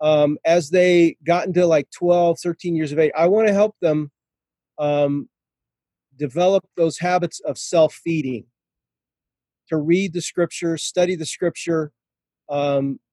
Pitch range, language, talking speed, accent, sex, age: 145-180 Hz, English, 135 wpm, American, male, 40-59